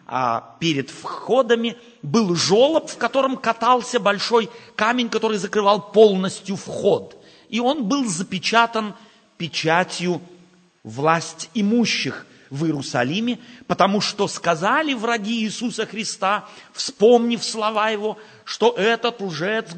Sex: male